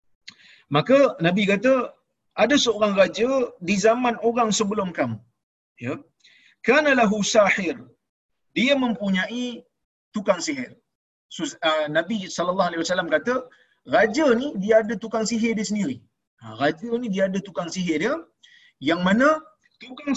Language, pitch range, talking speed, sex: Malayalam, 170-255 Hz, 135 wpm, male